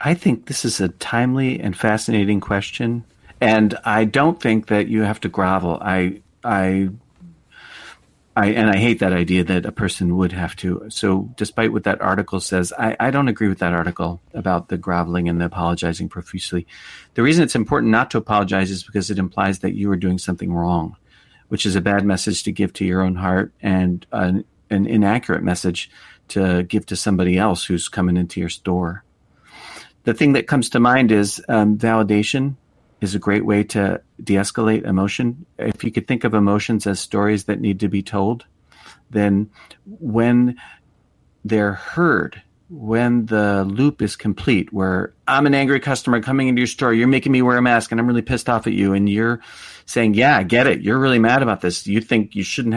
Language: English